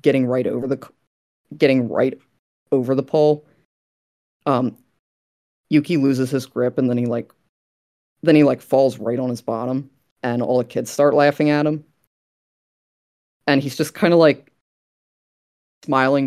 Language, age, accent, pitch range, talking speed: English, 20-39, American, 120-145 Hz, 150 wpm